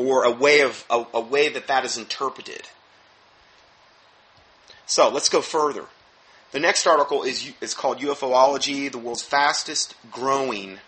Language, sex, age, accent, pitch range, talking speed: English, male, 30-49, American, 125-160 Hz, 145 wpm